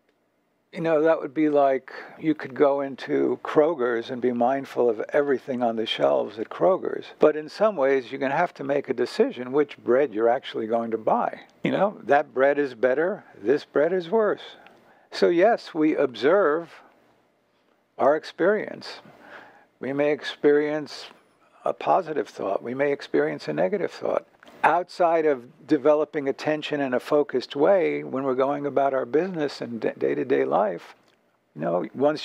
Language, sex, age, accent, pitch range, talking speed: English, male, 60-79, American, 130-155 Hz, 160 wpm